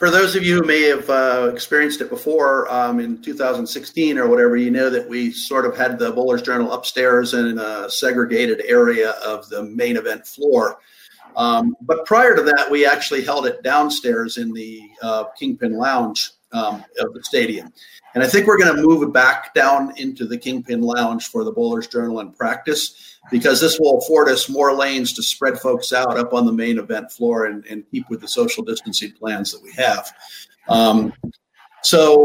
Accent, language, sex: American, English, male